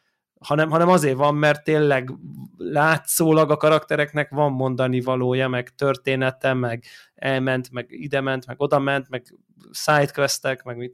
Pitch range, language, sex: 130-155 Hz, Hungarian, male